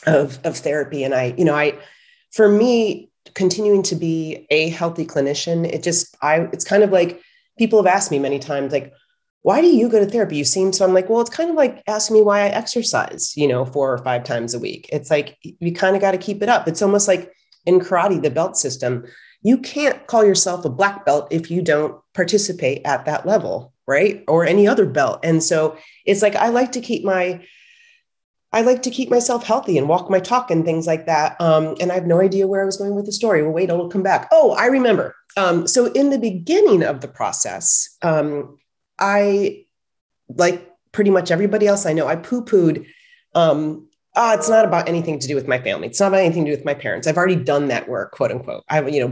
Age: 30-49